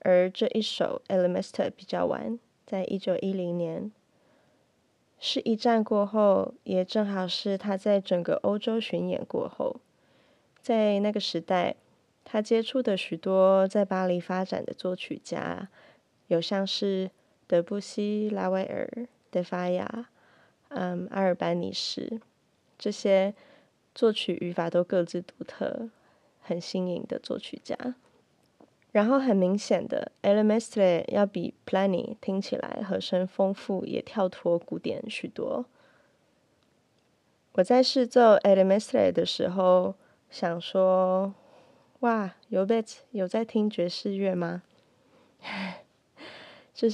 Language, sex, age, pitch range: Chinese, female, 20-39, 180-225 Hz